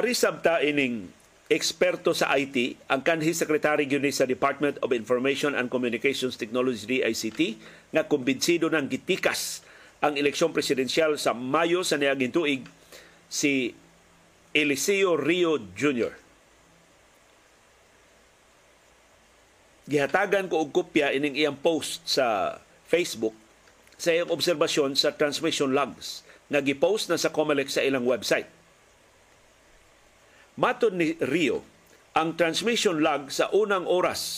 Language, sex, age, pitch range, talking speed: Filipino, male, 50-69, 135-170 Hz, 110 wpm